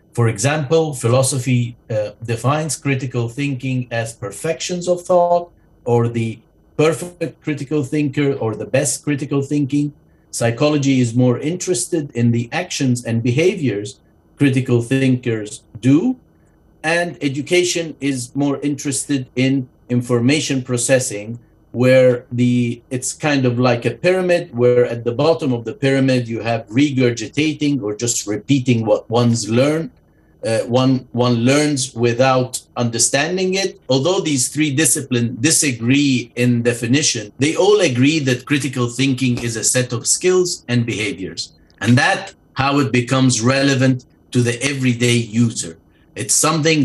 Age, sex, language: 50-69, male, English